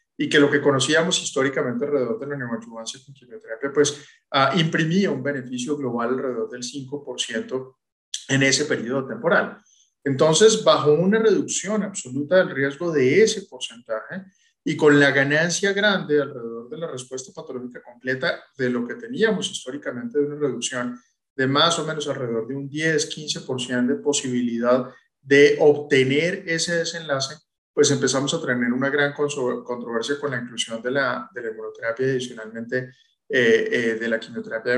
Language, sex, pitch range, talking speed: Spanish, male, 125-155 Hz, 150 wpm